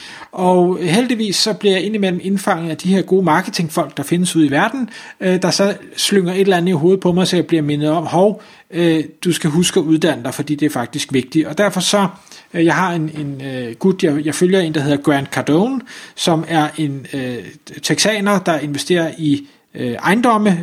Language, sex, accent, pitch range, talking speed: Danish, male, native, 150-190 Hz, 200 wpm